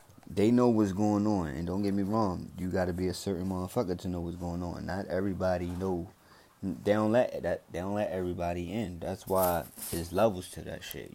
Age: 20-39